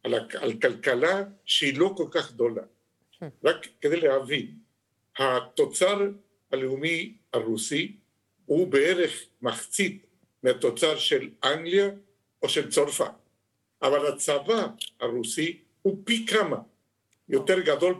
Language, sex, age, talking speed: Hebrew, male, 60-79, 100 wpm